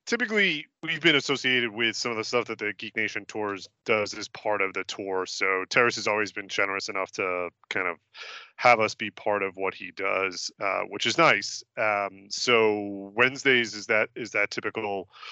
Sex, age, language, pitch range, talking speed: male, 30-49, English, 100-125 Hz, 195 wpm